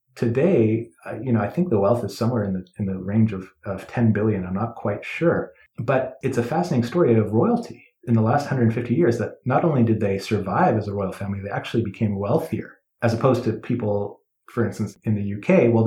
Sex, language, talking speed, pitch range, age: male, English, 220 wpm, 105-125 Hz, 30-49